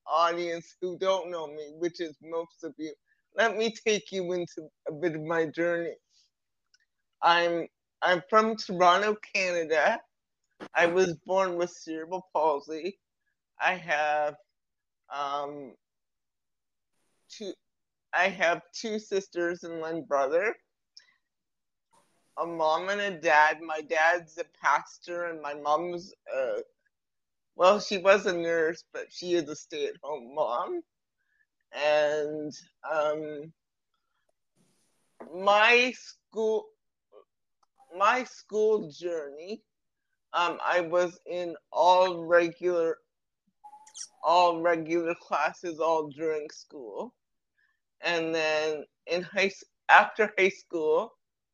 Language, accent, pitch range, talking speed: English, American, 160-215 Hz, 105 wpm